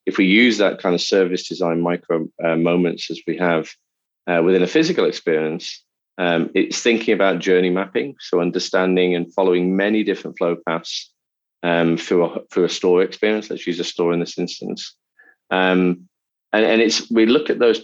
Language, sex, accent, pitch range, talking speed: English, male, British, 85-95 Hz, 180 wpm